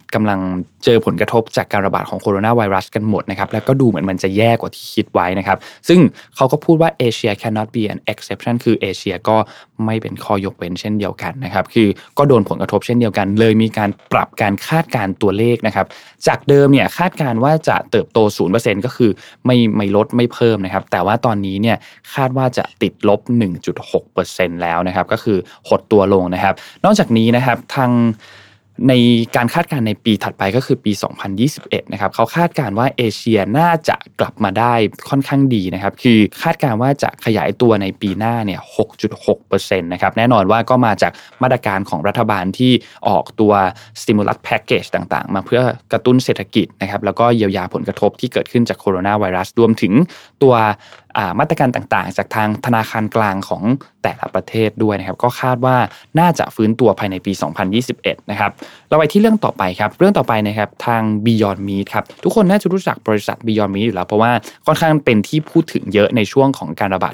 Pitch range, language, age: 100-125 Hz, Thai, 20-39